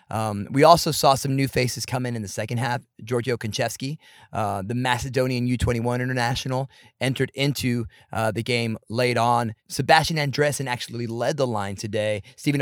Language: English